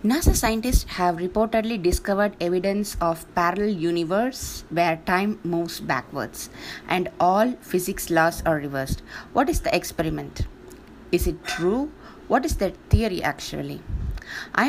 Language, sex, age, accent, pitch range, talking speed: English, female, 20-39, Indian, 170-215 Hz, 130 wpm